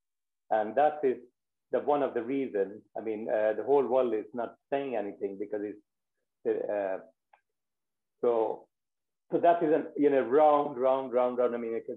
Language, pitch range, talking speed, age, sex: English, 120-165 Hz, 170 wpm, 50-69, male